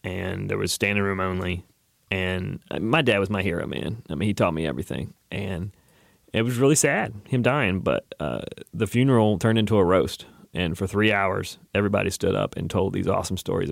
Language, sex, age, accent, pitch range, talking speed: English, male, 30-49, American, 100-120 Hz, 200 wpm